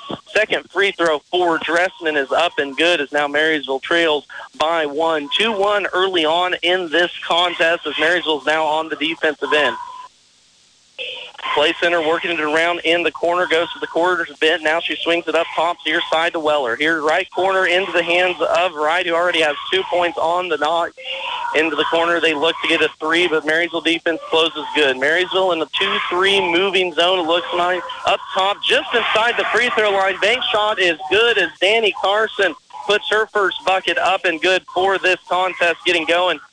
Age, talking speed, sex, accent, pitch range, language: 40-59, 195 wpm, male, American, 165-190 Hz, English